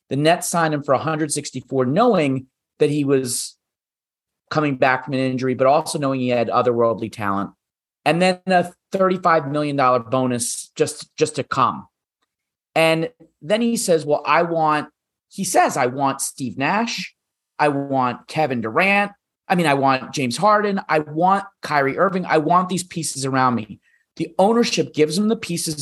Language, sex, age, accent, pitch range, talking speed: English, male, 30-49, American, 125-160 Hz, 165 wpm